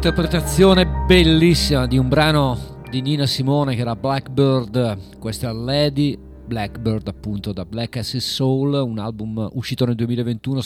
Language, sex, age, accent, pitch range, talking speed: Italian, male, 40-59, native, 115-145 Hz, 140 wpm